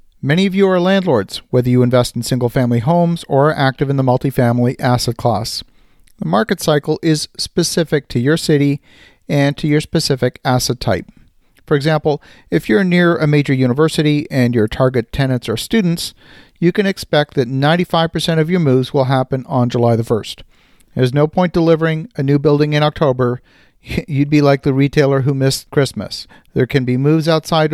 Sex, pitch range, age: male, 125-155 Hz, 50-69